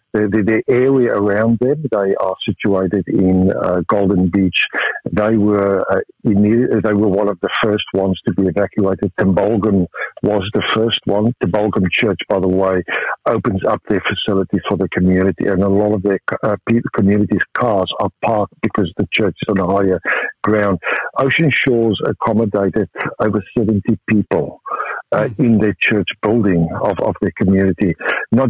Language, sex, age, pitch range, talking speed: English, male, 60-79, 95-110 Hz, 160 wpm